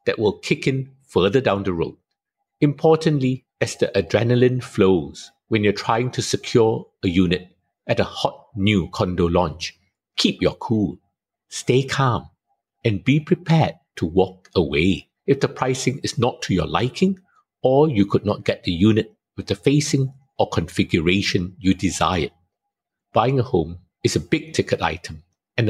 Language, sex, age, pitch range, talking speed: English, male, 50-69, 95-145 Hz, 160 wpm